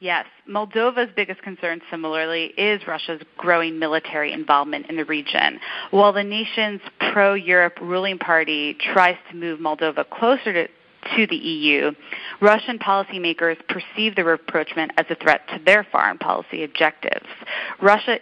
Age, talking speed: 30-49, 140 wpm